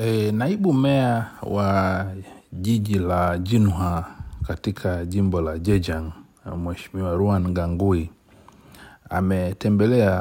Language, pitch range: Swahili, 90-100 Hz